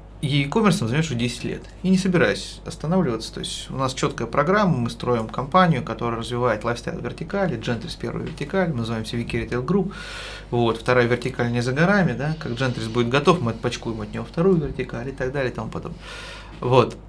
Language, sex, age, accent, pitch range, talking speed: Russian, male, 30-49, native, 120-165 Hz, 195 wpm